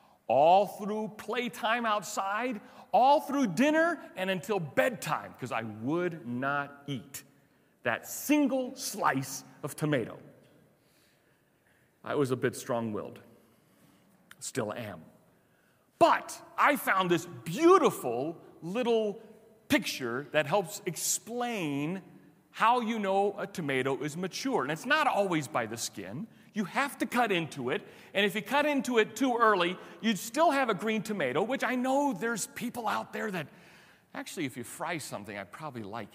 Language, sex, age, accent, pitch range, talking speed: English, male, 40-59, American, 155-230 Hz, 145 wpm